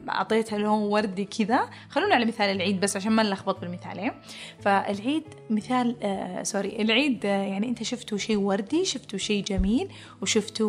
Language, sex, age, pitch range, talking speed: Arabic, female, 20-39, 205-255 Hz, 165 wpm